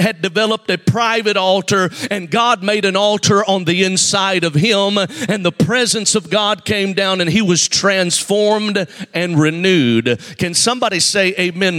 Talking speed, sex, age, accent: 165 wpm, male, 50-69, American